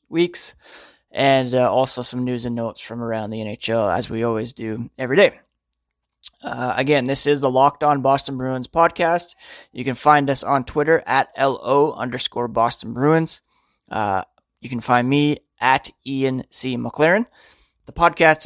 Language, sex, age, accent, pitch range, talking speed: English, male, 20-39, American, 120-145 Hz, 165 wpm